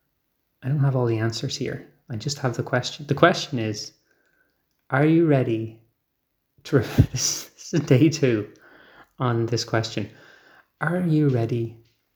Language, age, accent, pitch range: English, 20-39, Irish, 110-140 Hz